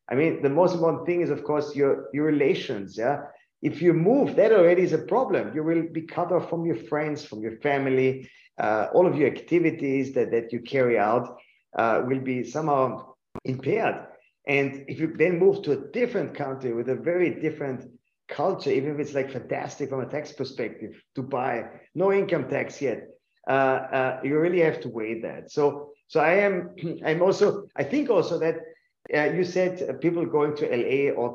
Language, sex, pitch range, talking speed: English, male, 130-165 Hz, 195 wpm